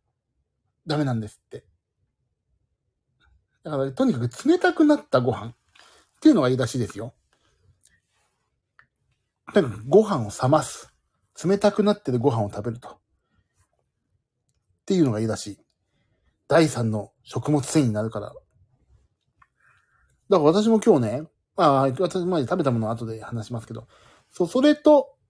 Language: Japanese